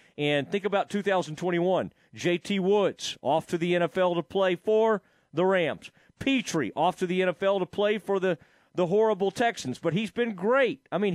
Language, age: English, 40-59